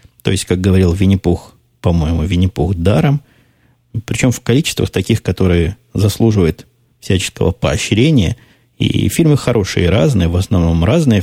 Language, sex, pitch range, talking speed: Russian, male, 90-120 Hz, 125 wpm